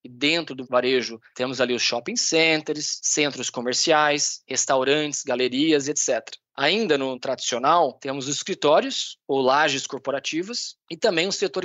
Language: Portuguese